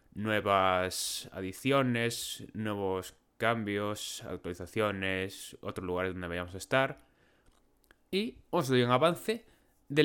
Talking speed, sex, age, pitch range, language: 100 wpm, male, 20-39, 100-135 Hz, Spanish